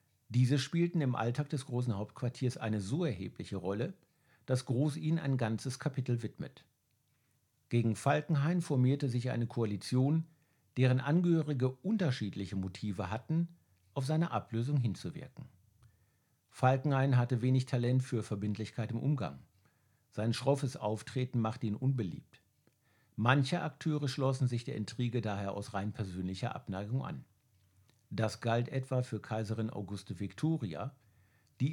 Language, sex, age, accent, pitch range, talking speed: German, male, 50-69, German, 110-140 Hz, 125 wpm